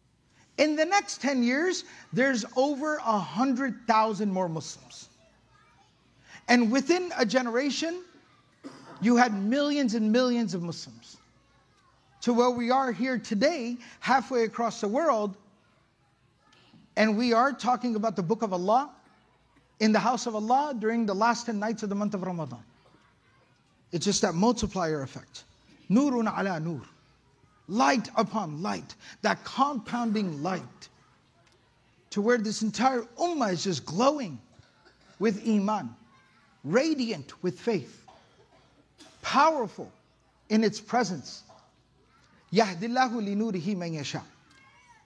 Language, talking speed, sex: English, 120 wpm, male